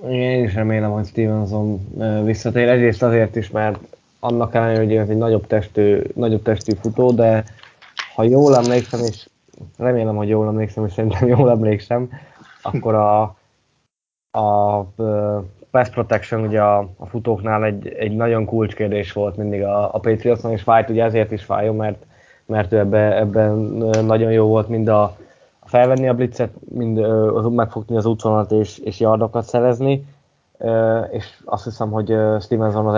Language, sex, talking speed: Hungarian, male, 155 wpm